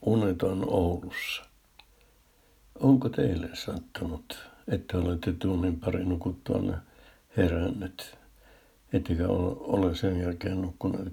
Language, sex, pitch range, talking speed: Finnish, male, 90-95 Hz, 85 wpm